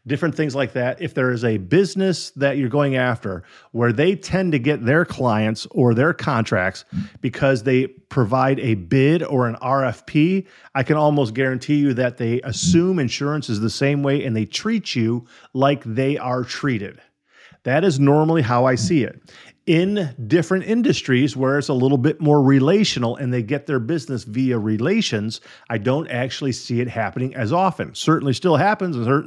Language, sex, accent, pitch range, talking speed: English, male, American, 125-160 Hz, 180 wpm